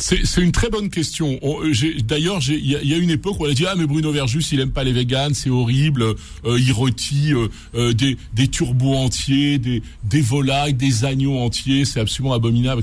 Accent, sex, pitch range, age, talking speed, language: French, male, 130-170 Hz, 60-79, 230 wpm, French